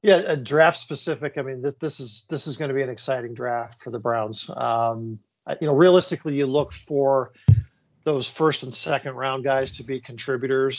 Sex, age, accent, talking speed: male, 40-59, American, 195 wpm